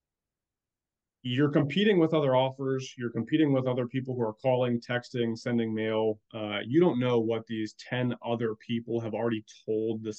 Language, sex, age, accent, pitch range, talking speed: English, male, 30-49, American, 110-130 Hz, 170 wpm